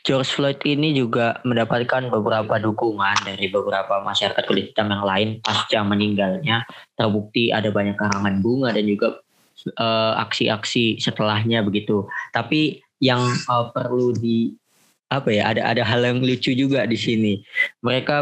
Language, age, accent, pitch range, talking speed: Indonesian, 20-39, native, 110-135 Hz, 140 wpm